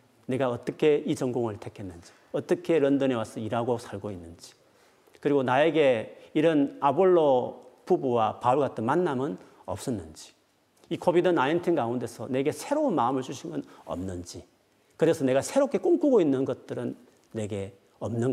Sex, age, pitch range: male, 40-59, 115-160 Hz